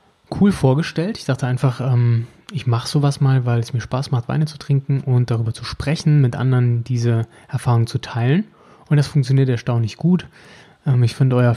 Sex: male